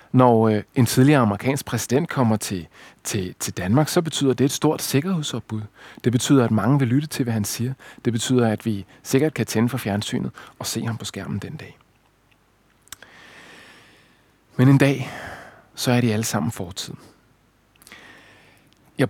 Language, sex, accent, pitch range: Danish, male, native, 110-145 Hz